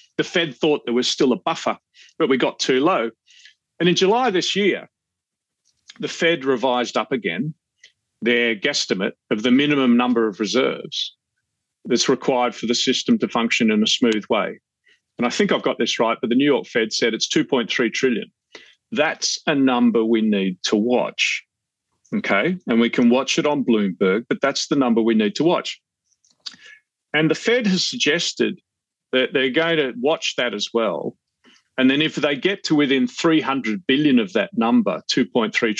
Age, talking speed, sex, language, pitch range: 40-59, 175 wpm, male, English, 125-185 Hz